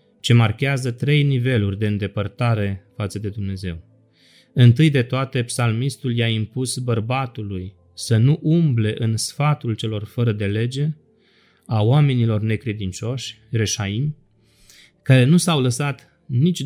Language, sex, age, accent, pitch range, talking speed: Romanian, male, 30-49, native, 110-140 Hz, 125 wpm